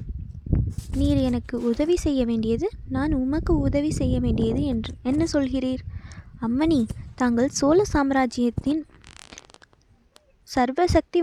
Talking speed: 95 wpm